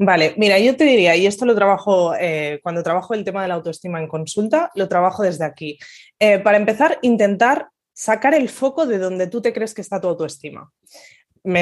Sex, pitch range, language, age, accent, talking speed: female, 180-240 Hz, Spanish, 20-39, Spanish, 205 wpm